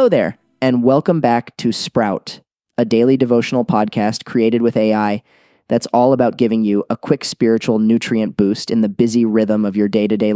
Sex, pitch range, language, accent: male, 105-125 Hz, English, American